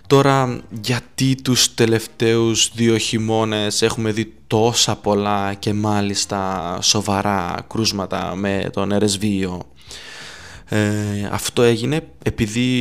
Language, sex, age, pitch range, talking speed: Greek, male, 20-39, 100-125 Hz, 95 wpm